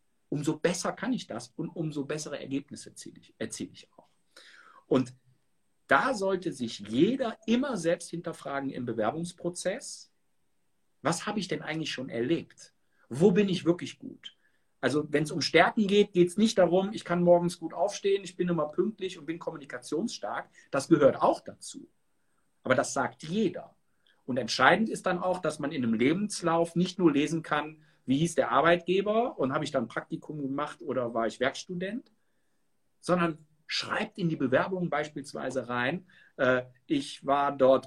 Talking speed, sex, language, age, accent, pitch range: 165 wpm, male, German, 50-69, German, 130-185 Hz